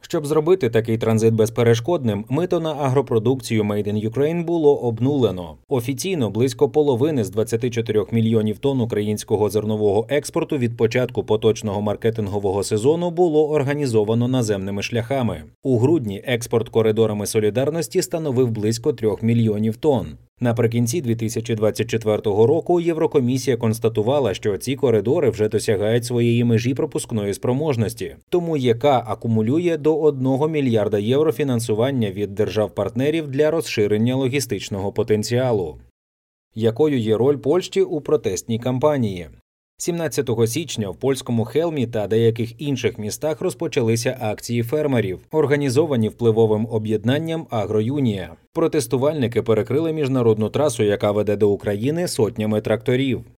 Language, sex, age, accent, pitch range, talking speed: Ukrainian, male, 30-49, native, 110-145 Hz, 115 wpm